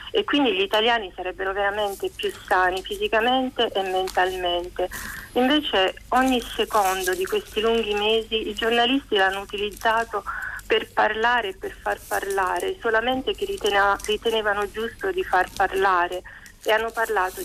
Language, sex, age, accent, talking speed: Italian, female, 40-59, native, 130 wpm